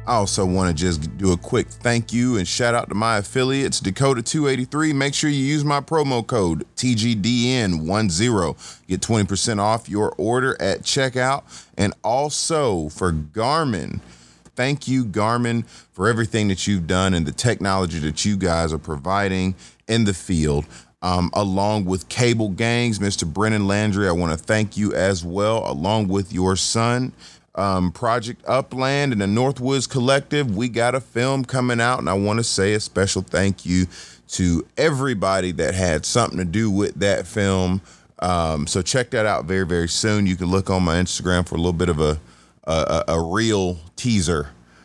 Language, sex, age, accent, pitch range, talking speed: English, male, 30-49, American, 90-120 Hz, 175 wpm